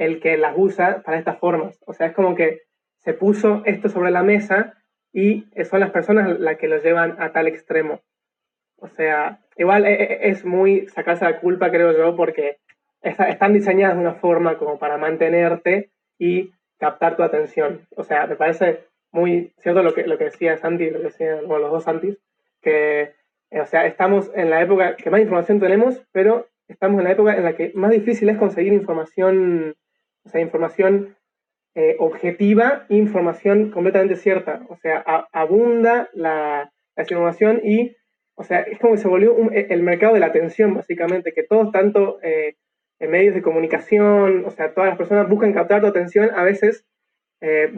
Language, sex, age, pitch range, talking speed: Spanish, male, 20-39, 165-210 Hz, 180 wpm